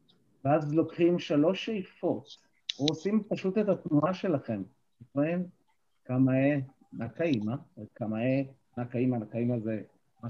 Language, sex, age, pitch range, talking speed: Hebrew, male, 50-69, 125-165 Hz, 105 wpm